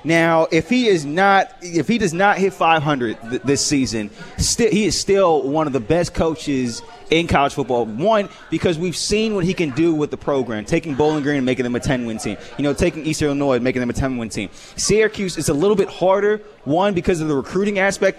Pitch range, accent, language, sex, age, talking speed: 140-180 Hz, American, English, male, 20-39, 230 wpm